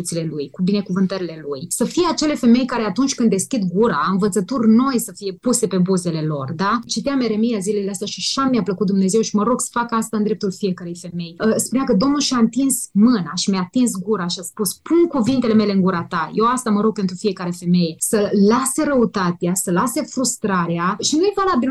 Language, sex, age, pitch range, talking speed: Romanian, female, 20-39, 185-245 Hz, 205 wpm